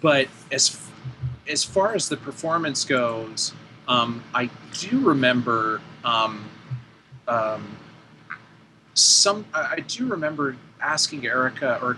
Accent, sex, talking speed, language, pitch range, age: American, male, 105 wpm, English, 115-145 Hz, 30-49